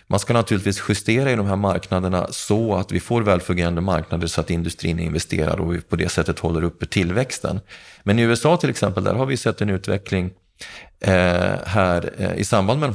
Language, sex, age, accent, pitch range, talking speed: Swedish, male, 30-49, native, 90-110 Hz, 195 wpm